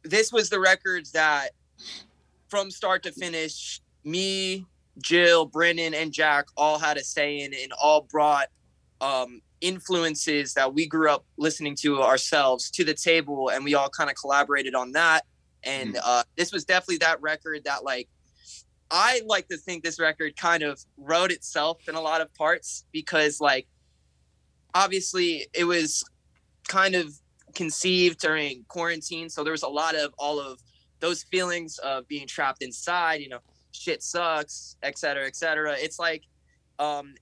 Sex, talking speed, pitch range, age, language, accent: male, 165 wpm, 145-170 Hz, 20-39, English, American